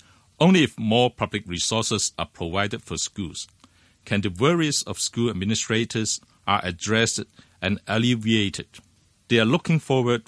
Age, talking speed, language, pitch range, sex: 60-79, 135 wpm, English, 95-120 Hz, male